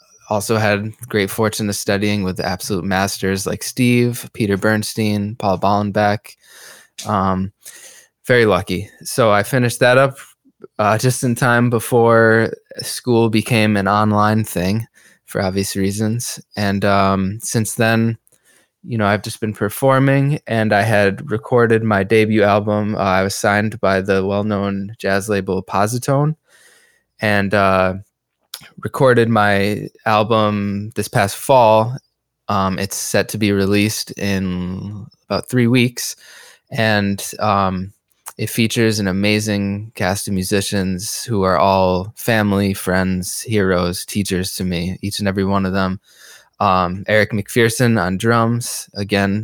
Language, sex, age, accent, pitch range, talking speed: English, male, 20-39, American, 100-115 Hz, 135 wpm